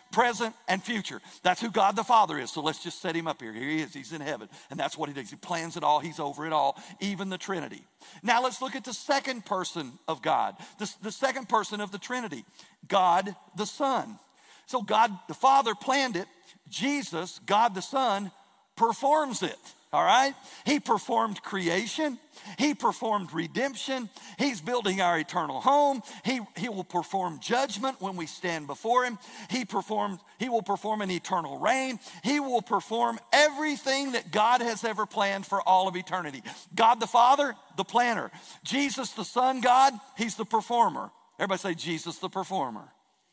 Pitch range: 175-245 Hz